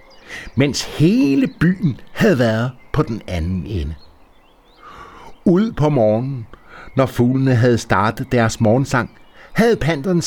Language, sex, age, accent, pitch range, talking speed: Danish, male, 60-79, native, 100-160 Hz, 115 wpm